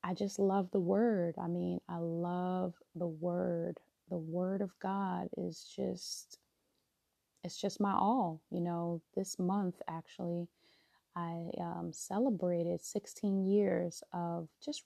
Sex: female